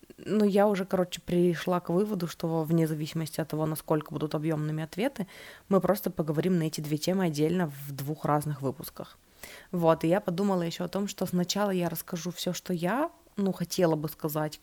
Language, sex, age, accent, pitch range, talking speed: Russian, female, 20-39, native, 160-190 Hz, 195 wpm